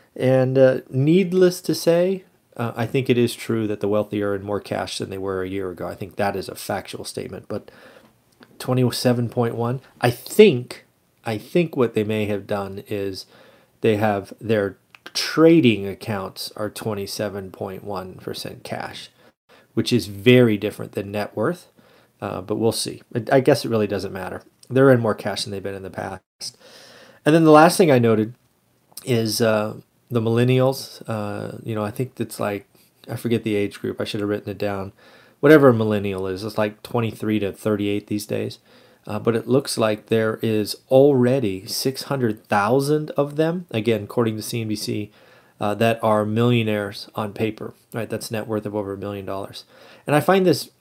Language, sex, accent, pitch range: English, male, American, 105-125 Hz